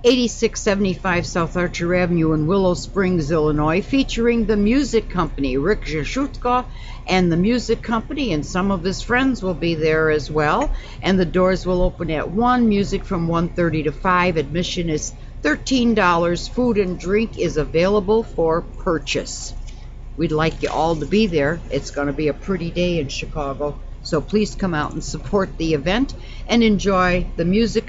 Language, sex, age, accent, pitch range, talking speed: English, female, 60-79, American, 160-205 Hz, 170 wpm